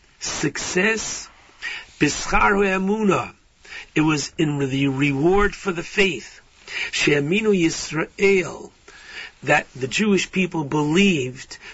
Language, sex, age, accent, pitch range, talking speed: English, male, 60-79, American, 160-190 Hz, 80 wpm